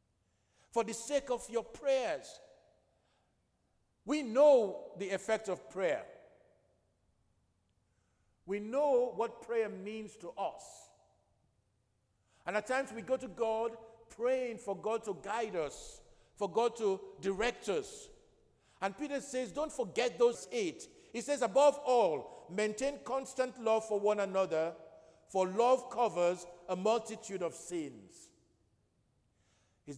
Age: 50-69